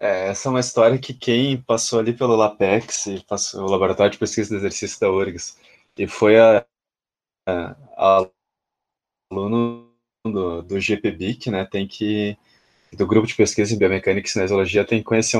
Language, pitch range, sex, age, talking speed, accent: Portuguese, 100-125 Hz, male, 20-39, 155 wpm, Brazilian